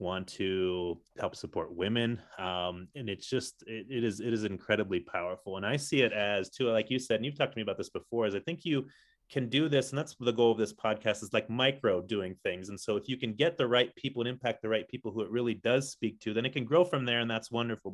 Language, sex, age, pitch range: English, male, 30-49, 105-120 Hz